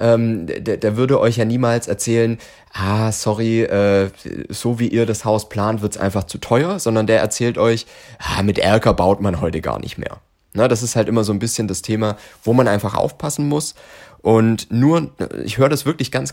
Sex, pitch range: male, 100-120 Hz